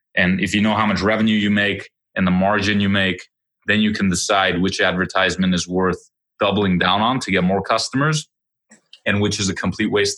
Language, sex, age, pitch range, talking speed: English, male, 20-39, 95-105 Hz, 205 wpm